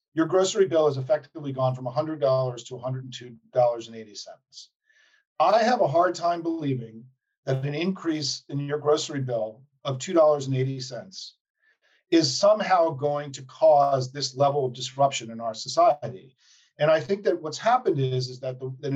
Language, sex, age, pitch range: English, male, 40-59, 135-190 Hz